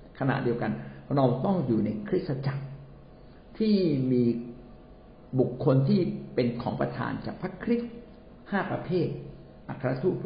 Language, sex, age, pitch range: Thai, male, 60-79, 120-160 Hz